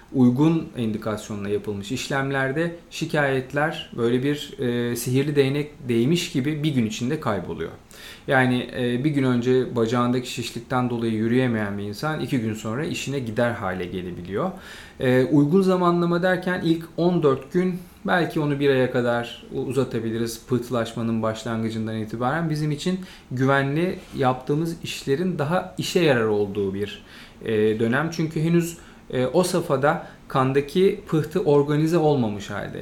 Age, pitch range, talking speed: 40-59, 115-150 Hz, 130 wpm